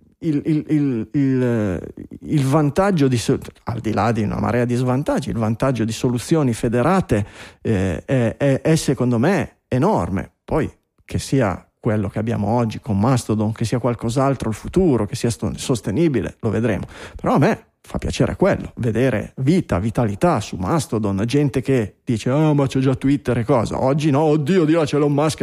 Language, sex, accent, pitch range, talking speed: Italian, male, native, 115-145 Hz, 170 wpm